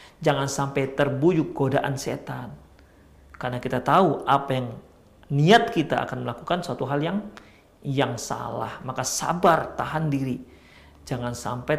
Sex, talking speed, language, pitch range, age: male, 125 wpm, Indonesian, 120-160 Hz, 50-69